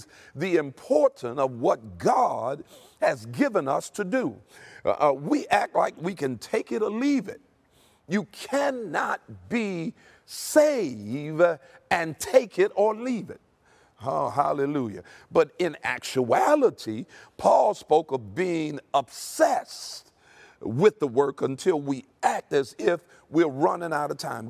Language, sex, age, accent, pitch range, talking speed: English, male, 50-69, American, 120-175 Hz, 130 wpm